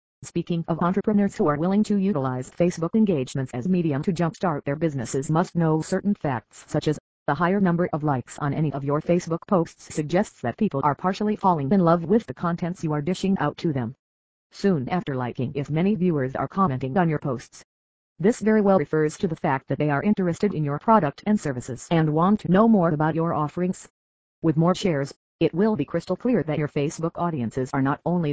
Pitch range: 145-190 Hz